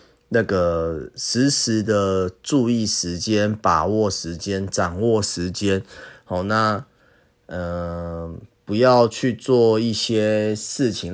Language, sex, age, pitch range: Chinese, male, 30-49, 95-120 Hz